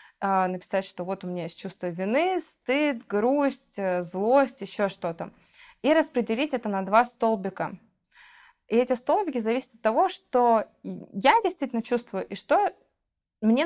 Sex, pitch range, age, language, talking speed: female, 195-245 Hz, 20-39, Russian, 140 wpm